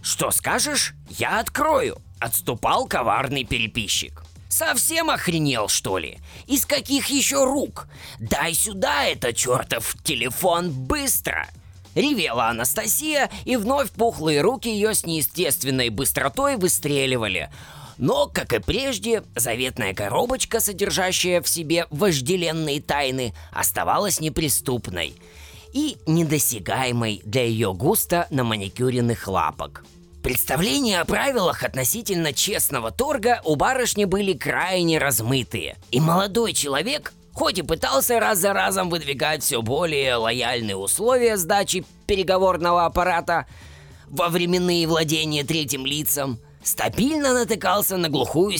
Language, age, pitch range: Russian, 20-39, 120-200 Hz